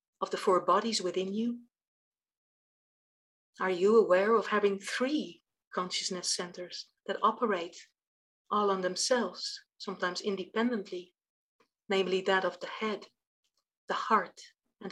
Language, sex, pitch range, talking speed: English, female, 185-235 Hz, 115 wpm